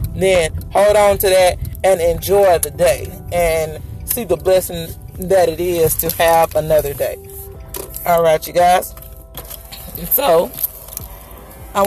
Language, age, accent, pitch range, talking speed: English, 30-49, American, 170-210 Hz, 130 wpm